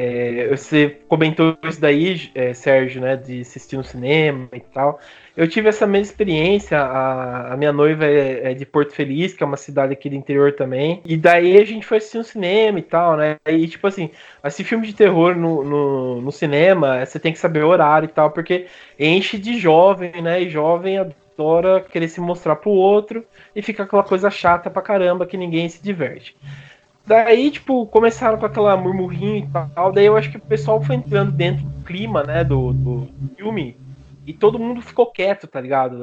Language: Portuguese